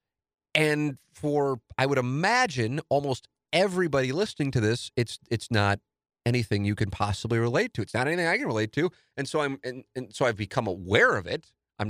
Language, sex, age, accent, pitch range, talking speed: English, male, 30-49, American, 95-120 Hz, 190 wpm